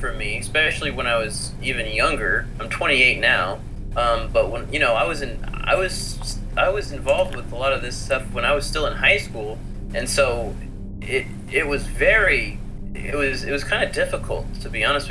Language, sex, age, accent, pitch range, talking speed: English, male, 20-39, American, 100-135 Hz, 210 wpm